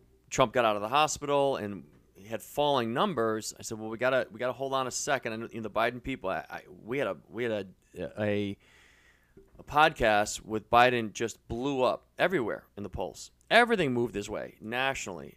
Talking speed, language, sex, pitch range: 195 wpm, English, male, 105-130 Hz